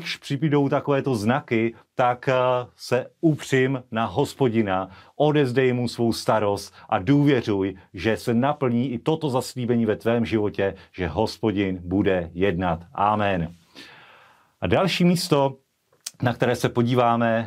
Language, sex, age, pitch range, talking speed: Slovak, male, 40-59, 115-150 Hz, 125 wpm